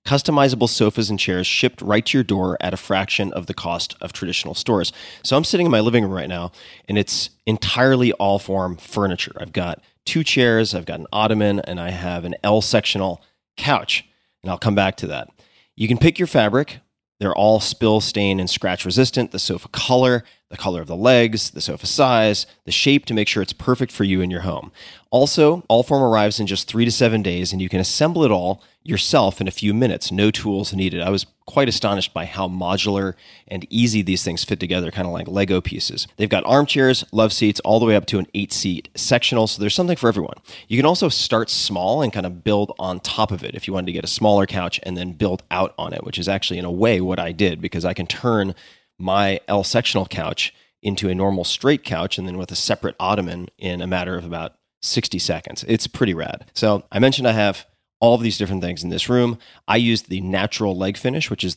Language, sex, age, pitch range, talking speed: English, male, 30-49, 90-115 Hz, 225 wpm